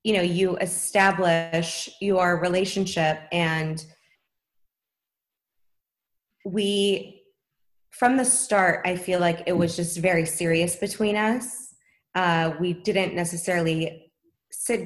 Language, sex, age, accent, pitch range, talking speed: English, female, 20-39, American, 165-195 Hz, 105 wpm